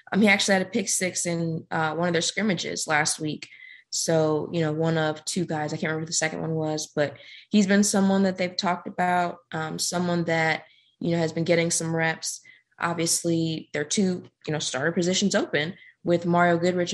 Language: English